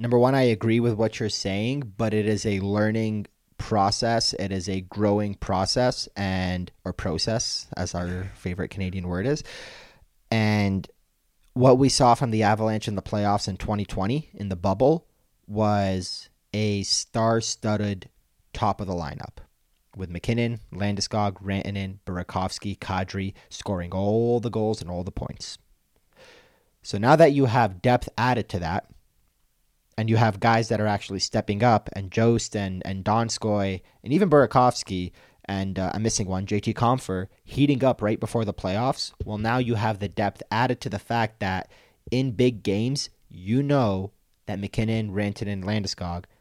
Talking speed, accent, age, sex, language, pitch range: 160 wpm, American, 30-49, male, English, 95-115 Hz